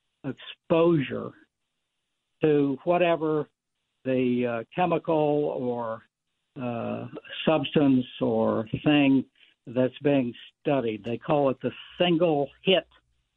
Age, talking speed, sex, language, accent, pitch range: 60-79, 90 wpm, male, English, American, 125-160 Hz